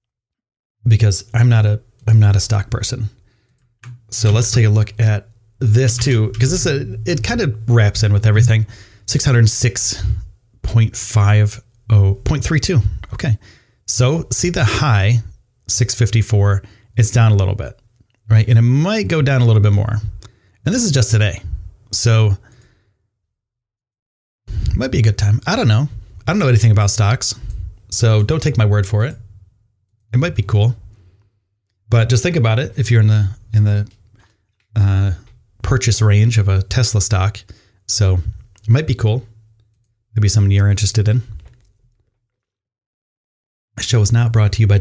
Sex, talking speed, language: male, 170 wpm, English